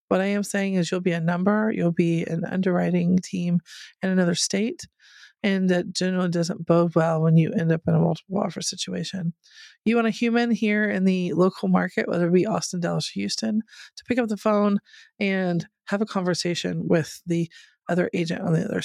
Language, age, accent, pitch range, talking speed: English, 30-49, American, 170-210 Hz, 200 wpm